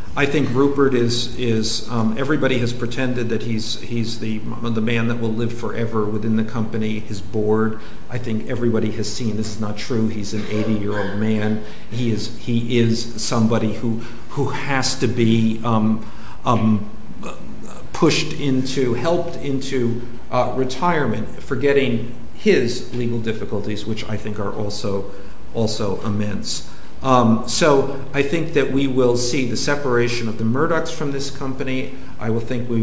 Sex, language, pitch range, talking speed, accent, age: male, English, 110-130 Hz, 155 wpm, American, 50-69